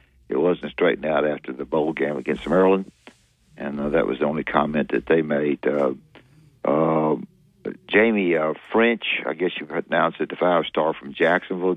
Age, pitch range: 60-79, 80-95 Hz